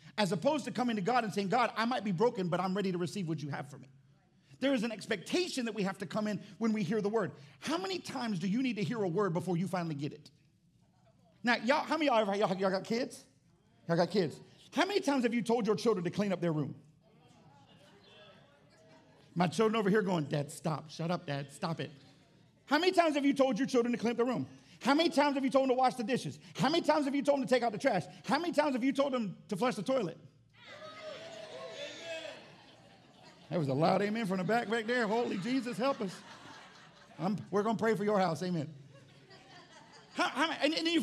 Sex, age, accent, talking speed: male, 40-59, American, 240 wpm